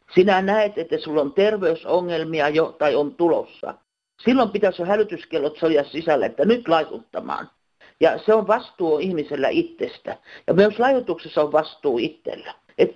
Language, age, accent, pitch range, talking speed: Finnish, 50-69, native, 165-240 Hz, 145 wpm